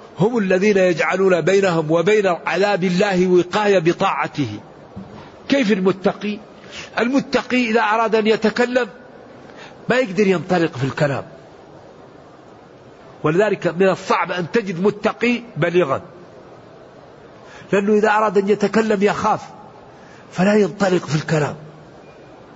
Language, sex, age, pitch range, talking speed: English, male, 50-69, 175-220 Hz, 100 wpm